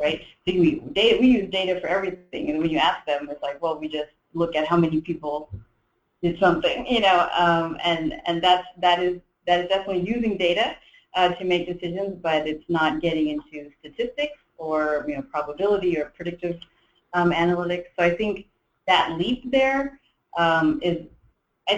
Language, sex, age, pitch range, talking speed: English, female, 30-49, 155-190 Hz, 180 wpm